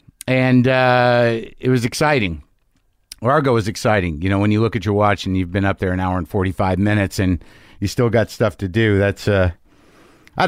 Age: 50-69